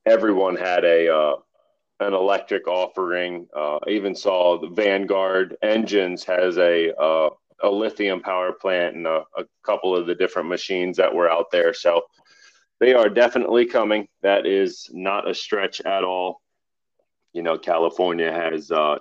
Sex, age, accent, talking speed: male, 30-49, American, 155 wpm